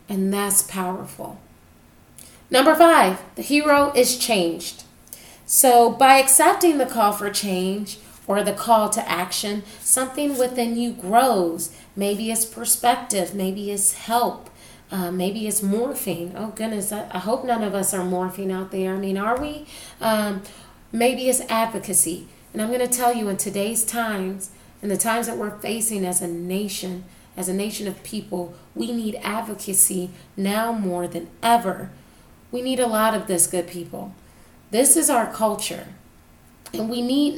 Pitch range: 190-240 Hz